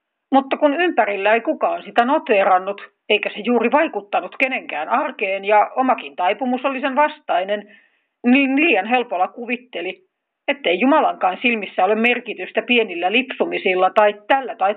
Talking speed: 135 wpm